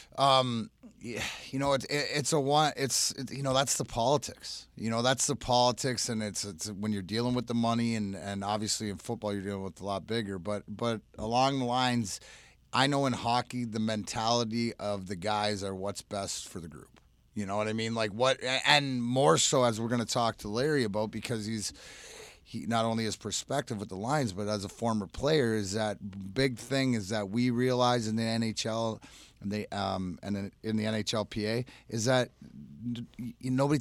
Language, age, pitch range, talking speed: English, 30-49, 105-125 Hz, 205 wpm